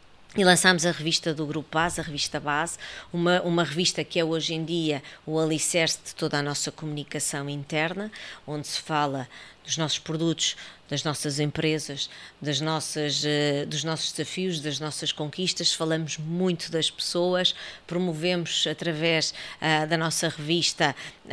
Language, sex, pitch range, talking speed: Portuguese, female, 150-170 Hz, 140 wpm